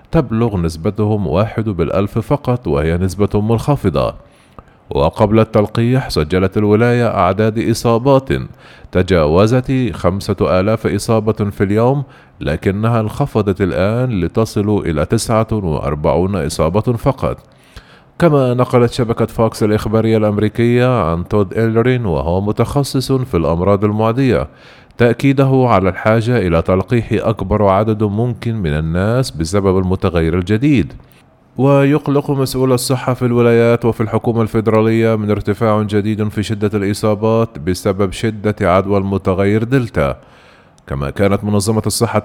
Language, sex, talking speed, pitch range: Arabic, male, 110 wpm, 100-120 Hz